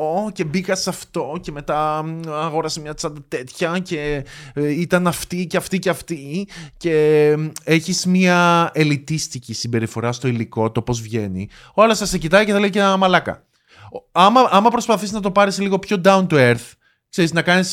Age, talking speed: 20-39, 165 wpm